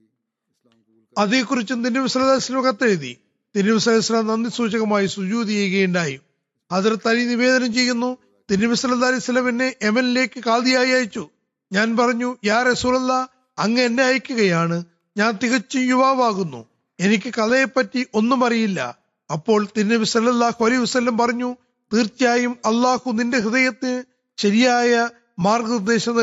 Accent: native